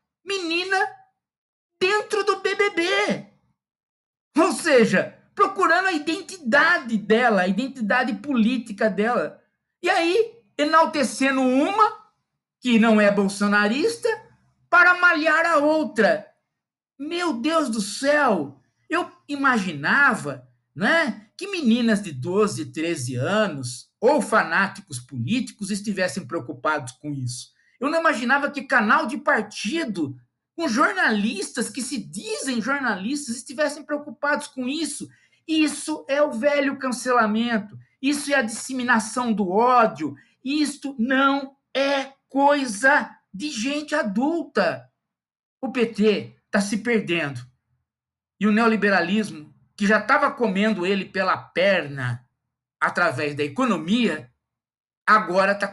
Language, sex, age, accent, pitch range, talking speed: Indonesian, male, 50-69, Brazilian, 200-290 Hz, 110 wpm